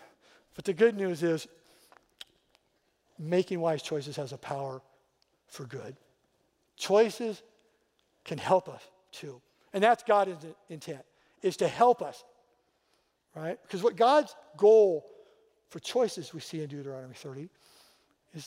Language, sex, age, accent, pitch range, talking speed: English, male, 60-79, American, 160-225 Hz, 125 wpm